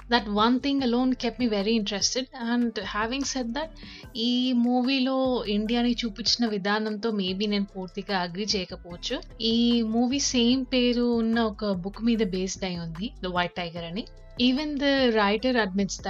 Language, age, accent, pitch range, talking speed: Telugu, 30-49, native, 195-235 Hz, 155 wpm